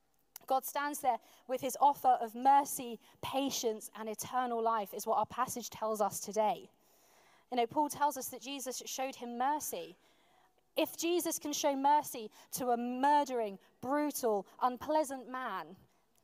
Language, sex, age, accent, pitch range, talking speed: English, female, 20-39, British, 230-290 Hz, 150 wpm